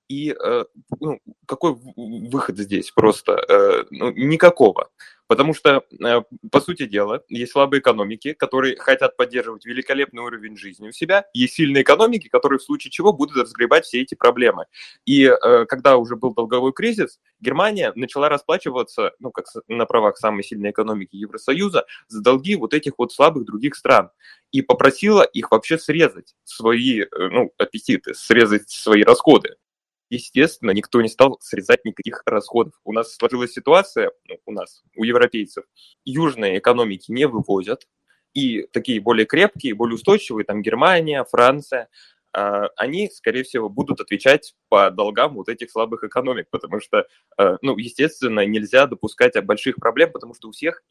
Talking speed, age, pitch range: 145 wpm, 20-39, 115-165 Hz